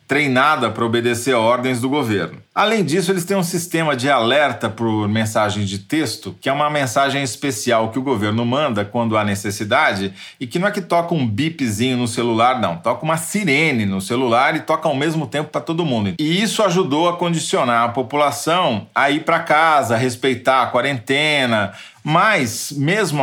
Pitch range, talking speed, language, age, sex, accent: 110-150 Hz, 185 wpm, Portuguese, 40-59, male, Brazilian